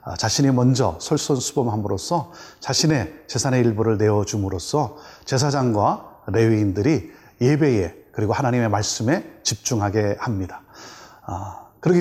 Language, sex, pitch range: Korean, male, 110-145 Hz